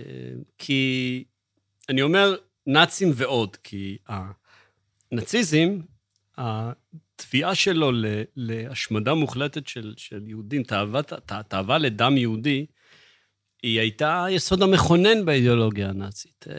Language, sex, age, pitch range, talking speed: Hebrew, male, 40-59, 105-145 Hz, 85 wpm